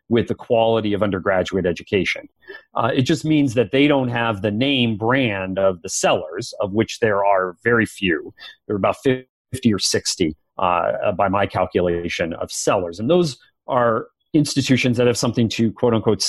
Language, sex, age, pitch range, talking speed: English, male, 40-59, 95-130 Hz, 175 wpm